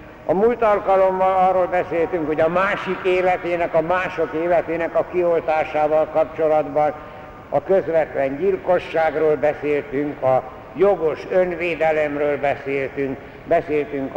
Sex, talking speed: male, 100 wpm